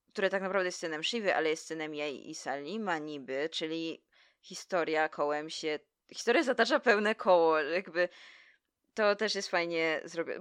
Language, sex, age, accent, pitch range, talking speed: Polish, female, 20-39, native, 155-195 Hz, 155 wpm